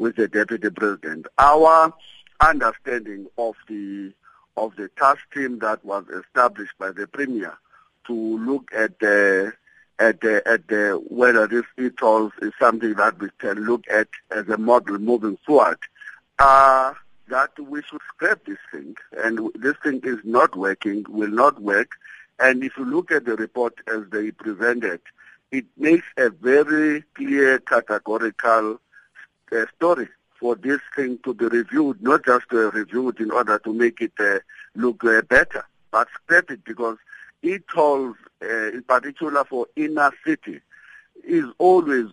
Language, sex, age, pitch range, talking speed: English, male, 60-79, 110-140 Hz, 150 wpm